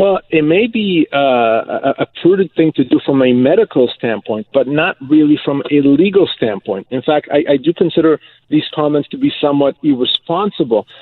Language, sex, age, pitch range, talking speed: English, male, 40-59, 135-175 Hz, 180 wpm